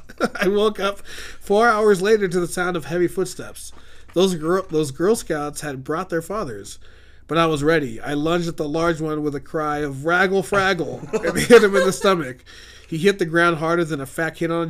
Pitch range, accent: 140-170 Hz, American